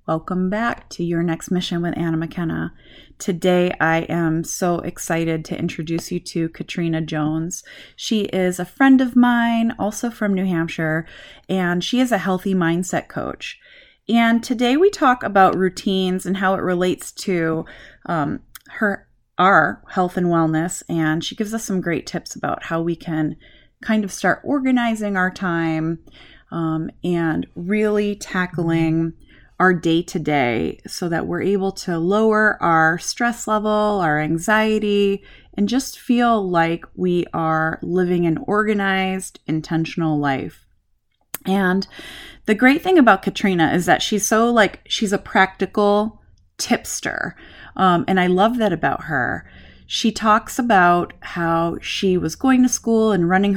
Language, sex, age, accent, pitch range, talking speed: English, female, 30-49, American, 165-215 Hz, 150 wpm